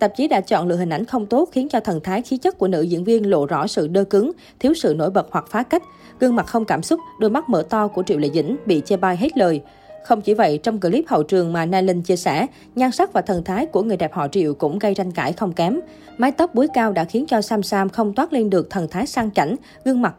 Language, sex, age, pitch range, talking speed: Vietnamese, female, 20-39, 180-235 Hz, 280 wpm